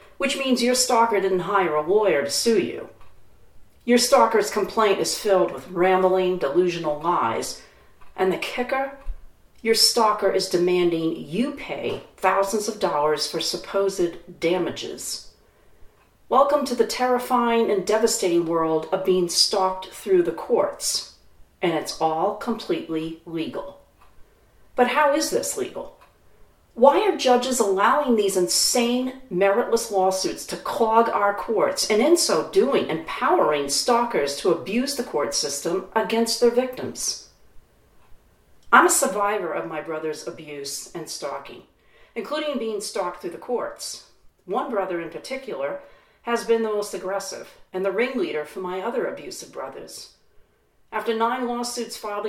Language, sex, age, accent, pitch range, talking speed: English, female, 40-59, American, 180-245 Hz, 140 wpm